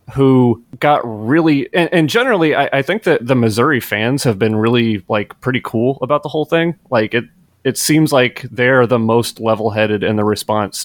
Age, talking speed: 30-49, 200 wpm